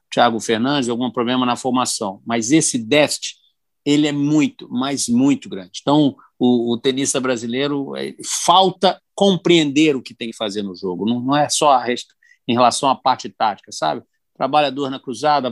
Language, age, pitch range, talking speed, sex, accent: Portuguese, 50-69, 115-150 Hz, 175 wpm, male, Brazilian